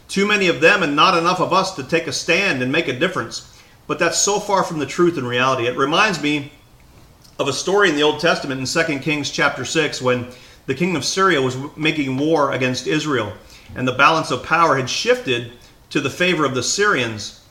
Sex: male